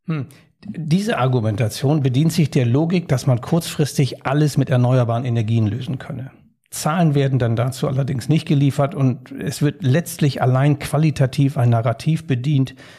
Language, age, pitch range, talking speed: German, 60-79, 125-155 Hz, 150 wpm